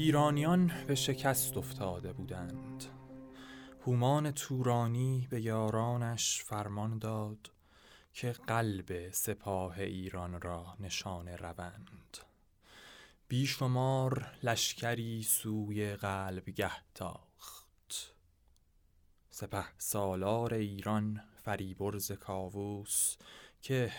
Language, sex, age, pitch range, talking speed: English, male, 20-39, 95-120 Hz, 70 wpm